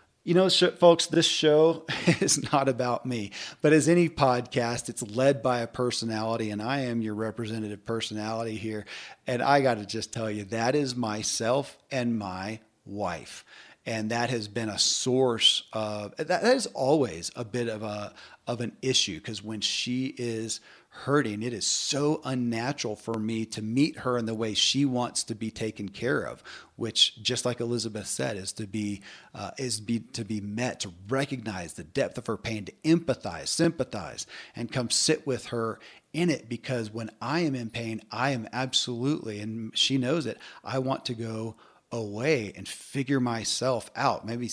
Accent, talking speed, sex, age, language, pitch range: American, 180 wpm, male, 40-59, English, 110-135 Hz